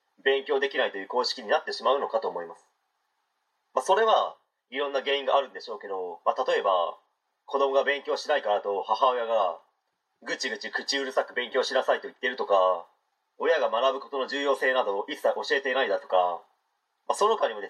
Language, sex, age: Japanese, male, 30-49